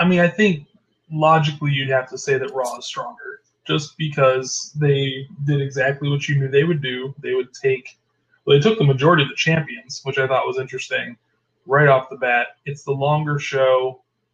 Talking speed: 205 wpm